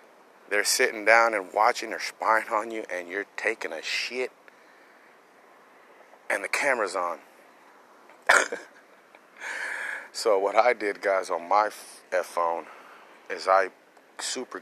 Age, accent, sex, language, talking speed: 30-49, American, male, English, 120 wpm